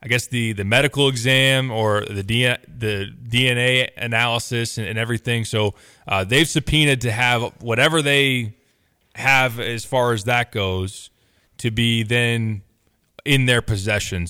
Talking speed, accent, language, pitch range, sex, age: 145 wpm, American, English, 105-120 Hz, male, 20-39